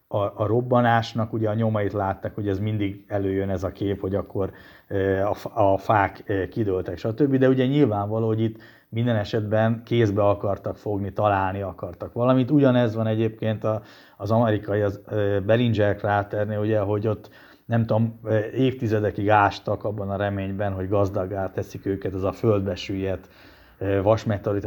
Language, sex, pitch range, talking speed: Hungarian, male, 100-115 Hz, 140 wpm